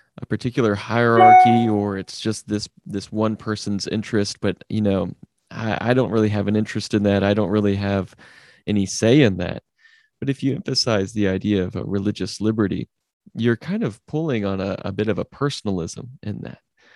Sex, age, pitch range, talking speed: male, 20-39, 100-120 Hz, 190 wpm